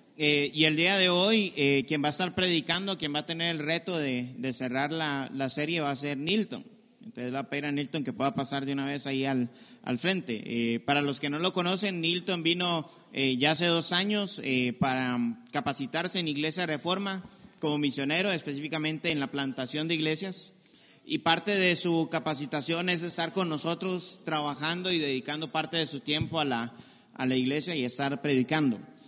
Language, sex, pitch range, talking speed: Spanish, male, 145-185 Hz, 195 wpm